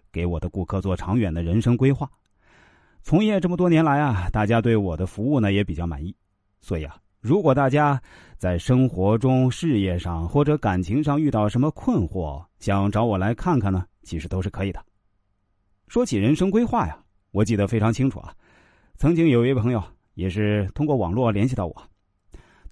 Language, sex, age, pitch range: Chinese, male, 30-49, 95-145 Hz